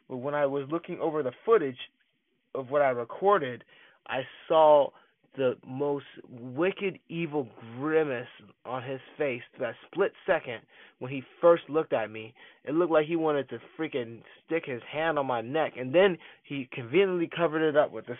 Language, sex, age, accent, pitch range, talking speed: English, male, 20-39, American, 125-155 Hz, 180 wpm